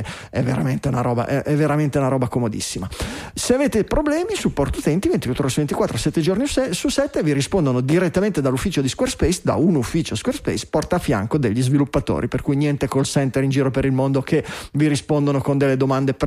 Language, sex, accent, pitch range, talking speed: Italian, male, native, 135-195 Hz, 195 wpm